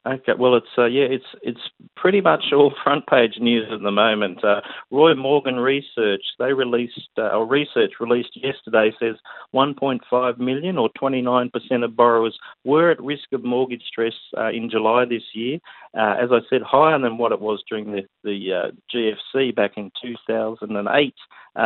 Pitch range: 115-135 Hz